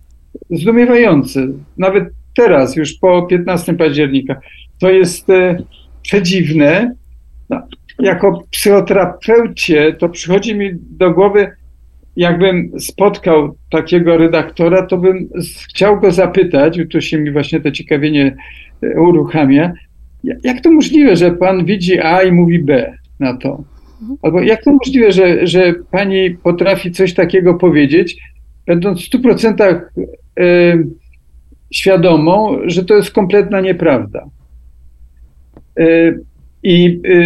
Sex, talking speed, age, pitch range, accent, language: male, 115 wpm, 50-69, 150-190 Hz, native, Polish